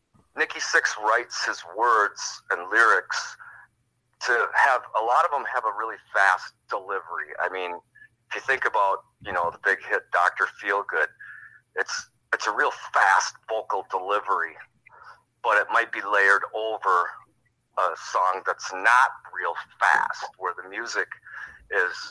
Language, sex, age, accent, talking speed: English, male, 40-59, American, 150 wpm